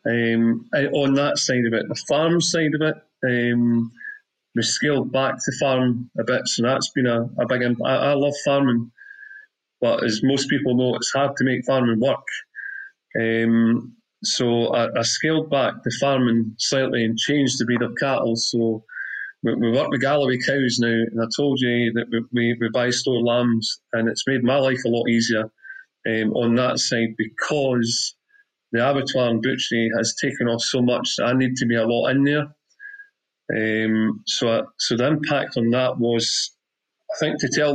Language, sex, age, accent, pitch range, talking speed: English, male, 30-49, British, 115-140 Hz, 190 wpm